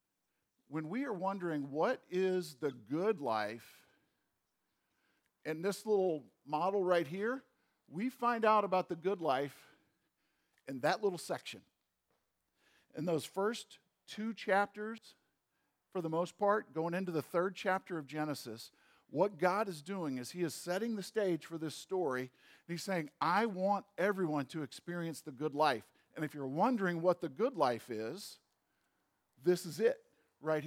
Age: 50-69